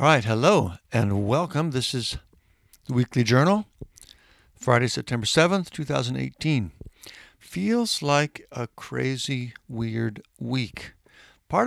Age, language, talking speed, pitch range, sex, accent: 60-79, English, 110 wpm, 100-130 Hz, male, American